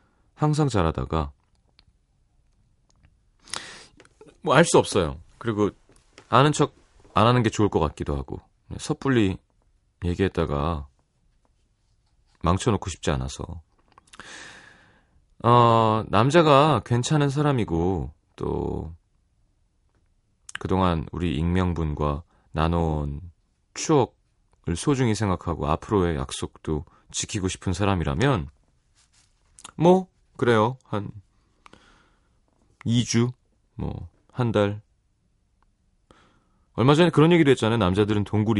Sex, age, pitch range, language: male, 30-49, 85-120 Hz, Korean